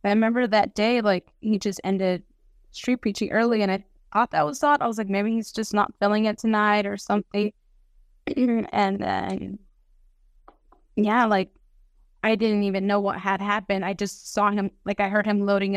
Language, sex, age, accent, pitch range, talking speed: English, female, 20-39, American, 200-230 Hz, 185 wpm